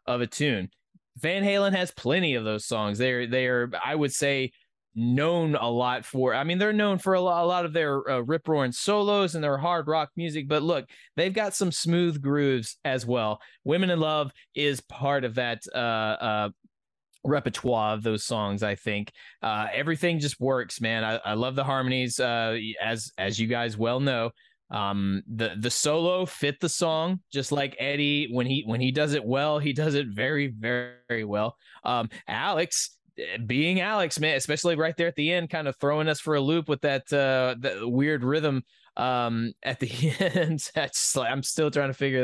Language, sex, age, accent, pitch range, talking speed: English, male, 20-39, American, 120-155 Hz, 190 wpm